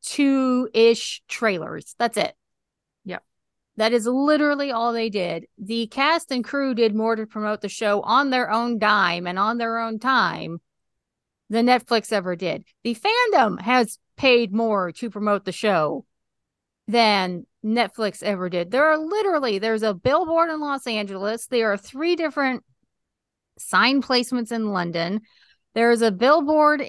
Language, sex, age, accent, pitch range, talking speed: English, female, 40-59, American, 215-270 Hz, 150 wpm